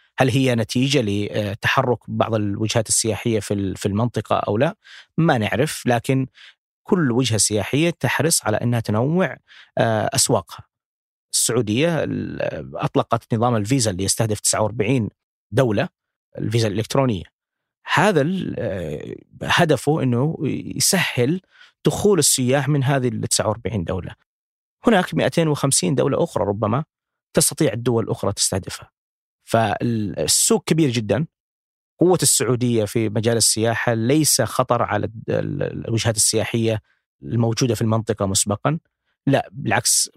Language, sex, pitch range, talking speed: Arabic, male, 105-130 Hz, 105 wpm